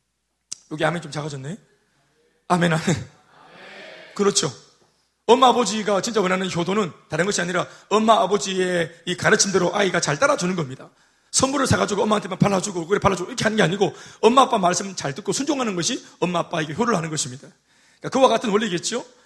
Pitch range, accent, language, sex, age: 170-225 Hz, native, Korean, male, 30-49